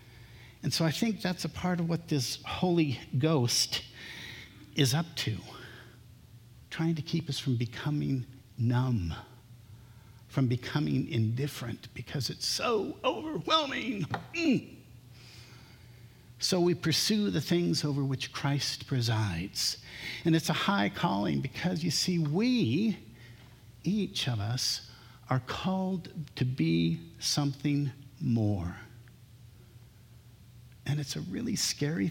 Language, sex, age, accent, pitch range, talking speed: English, male, 50-69, American, 120-165 Hz, 115 wpm